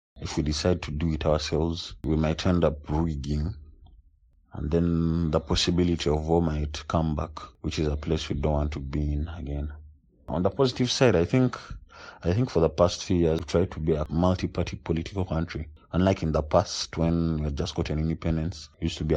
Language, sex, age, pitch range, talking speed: Hebrew, male, 30-49, 75-85 Hz, 215 wpm